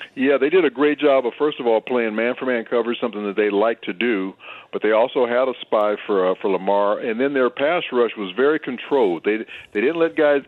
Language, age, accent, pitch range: English, 50-69, American, 105-130 Hz